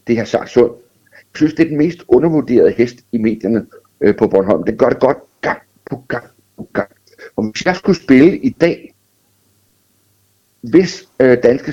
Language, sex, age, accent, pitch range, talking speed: Danish, male, 60-79, native, 105-130 Hz, 175 wpm